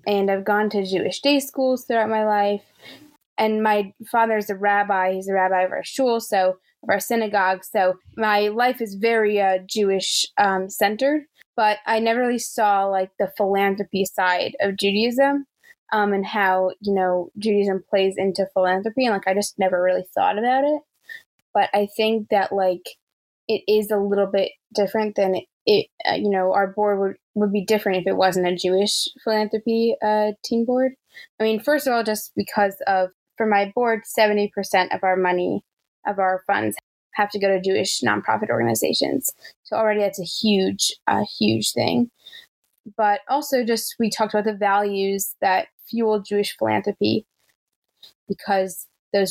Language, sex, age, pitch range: English, female, 20-39, 190-225 Hz